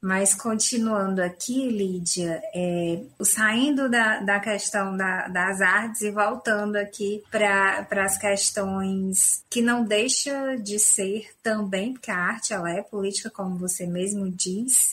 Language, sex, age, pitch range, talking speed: Portuguese, female, 20-39, 185-220 Hz, 135 wpm